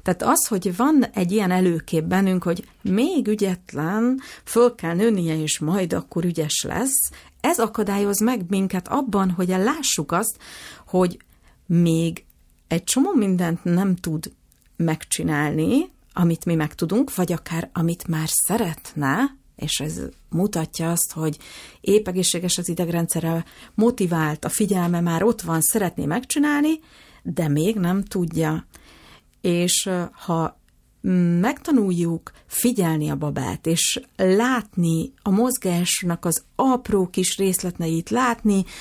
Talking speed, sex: 125 wpm, female